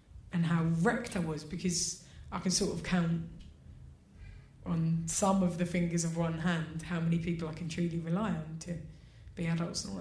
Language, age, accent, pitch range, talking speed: English, 20-39, British, 165-275 Hz, 190 wpm